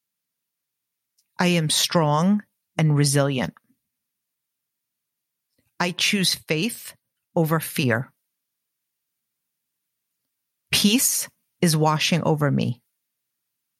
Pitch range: 150-185 Hz